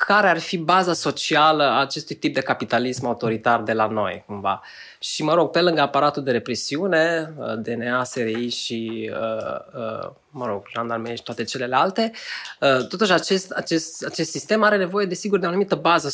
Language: Romanian